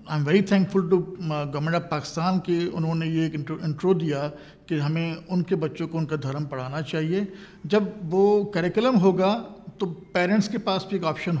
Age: 50-69